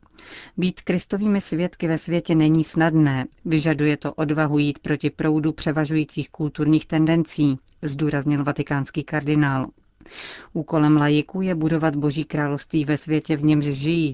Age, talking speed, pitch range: 40-59, 125 wpm, 145-160 Hz